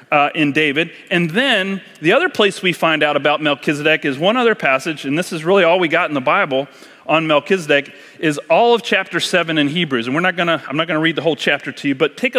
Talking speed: 255 wpm